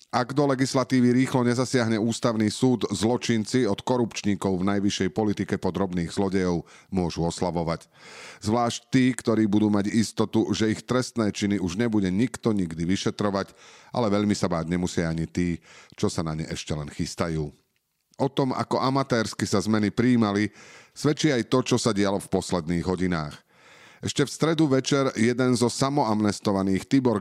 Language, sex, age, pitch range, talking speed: Slovak, male, 40-59, 95-120 Hz, 155 wpm